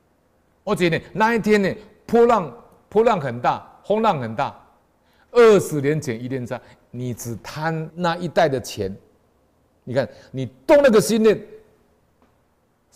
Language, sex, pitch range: Chinese, male, 95-150 Hz